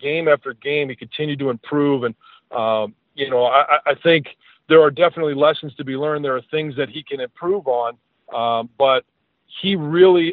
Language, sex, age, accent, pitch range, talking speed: English, male, 40-59, American, 140-165 Hz, 190 wpm